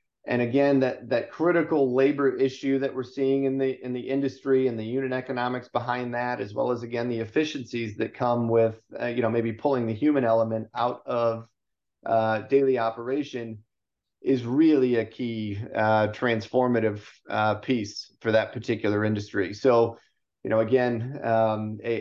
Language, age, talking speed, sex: English, 40-59, 165 wpm, male